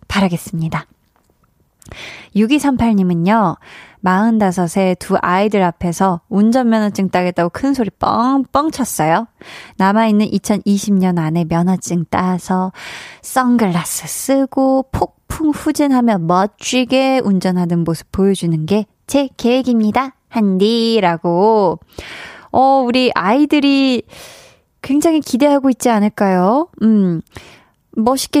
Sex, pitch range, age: female, 185-255 Hz, 20-39